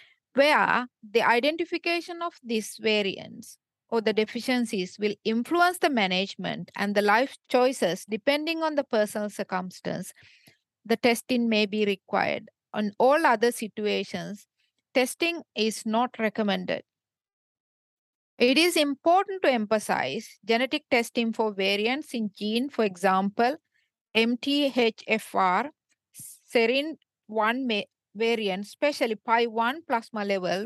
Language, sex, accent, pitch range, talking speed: English, female, Indian, 210-265 Hz, 110 wpm